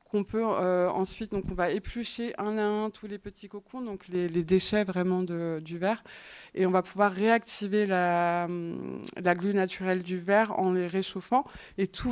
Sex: female